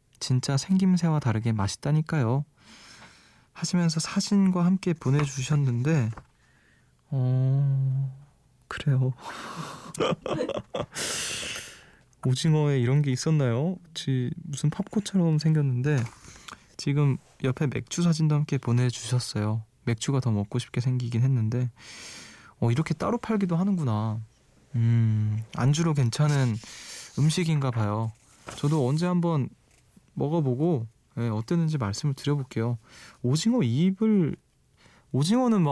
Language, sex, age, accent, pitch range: Korean, male, 20-39, native, 115-155 Hz